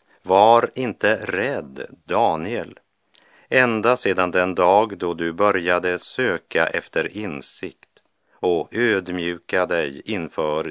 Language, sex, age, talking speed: English, male, 50-69, 100 wpm